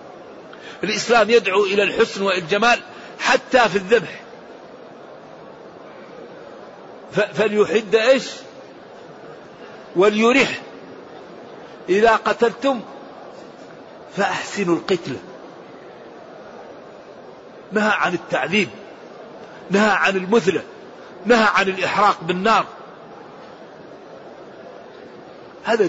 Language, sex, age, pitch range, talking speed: Arabic, male, 50-69, 180-220 Hz, 60 wpm